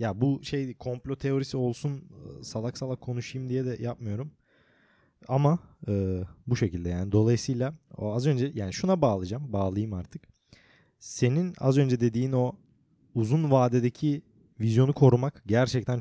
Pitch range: 110-140 Hz